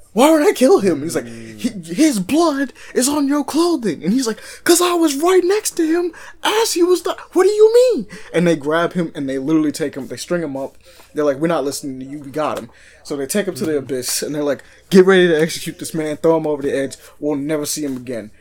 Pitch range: 145-210 Hz